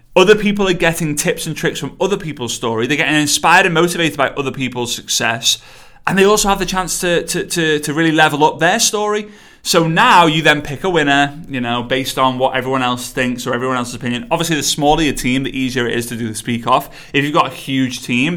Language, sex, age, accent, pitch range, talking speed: English, male, 20-39, British, 130-180 Hz, 230 wpm